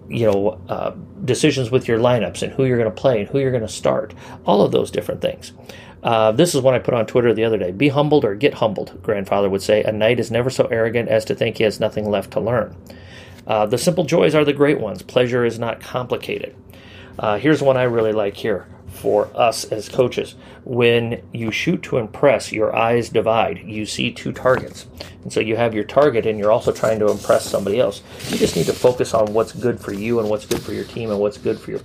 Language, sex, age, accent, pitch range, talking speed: English, male, 40-59, American, 105-130 Hz, 240 wpm